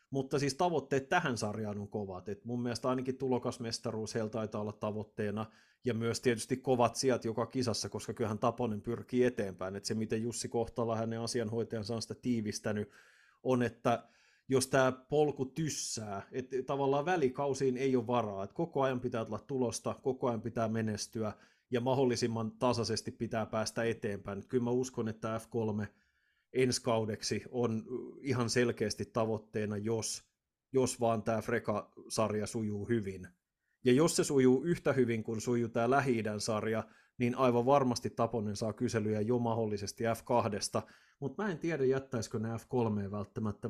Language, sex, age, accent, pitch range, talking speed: Finnish, male, 30-49, native, 110-130 Hz, 155 wpm